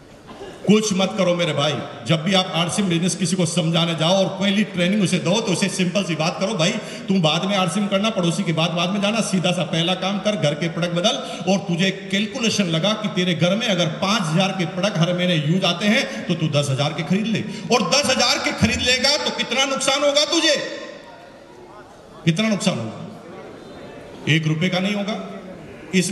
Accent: native